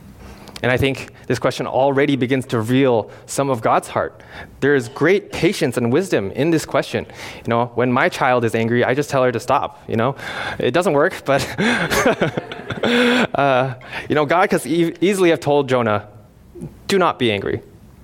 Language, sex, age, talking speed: English, male, 20-39, 180 wpm